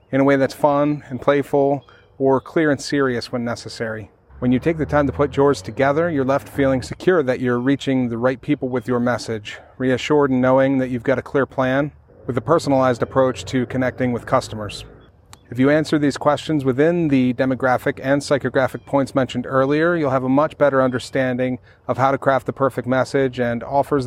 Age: 30-49